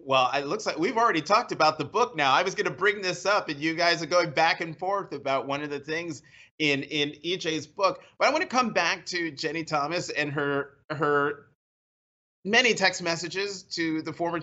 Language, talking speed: English, 220 wpm